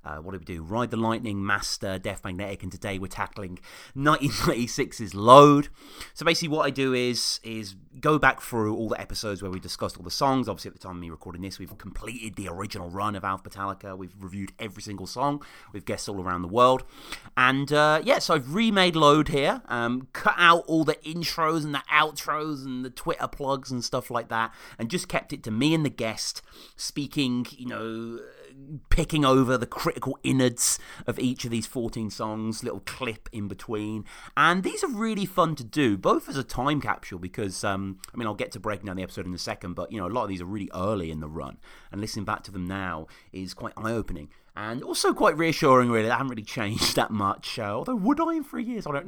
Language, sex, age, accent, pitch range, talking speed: English, male, 30-49, British, 100-145 Hz, 220 wpm